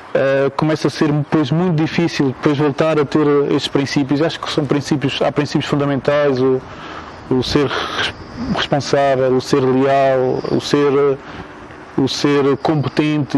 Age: 20-39